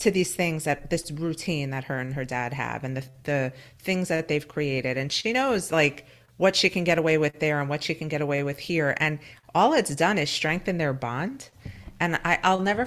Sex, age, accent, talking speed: female, 40-59, American, 235 wpm